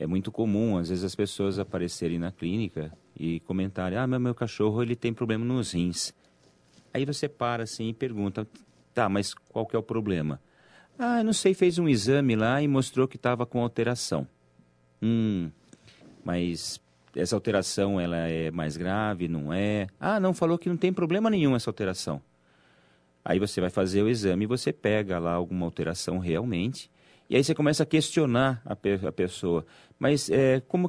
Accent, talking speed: Brazilian, 180 wpm